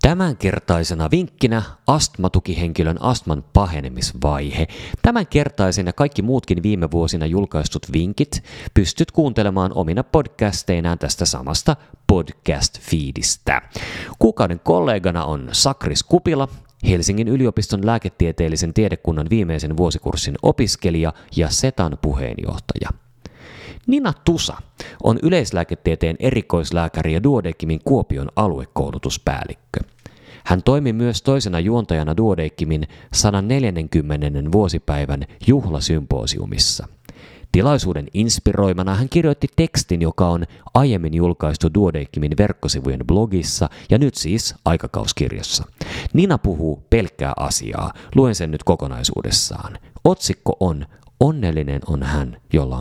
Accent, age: native, 30-49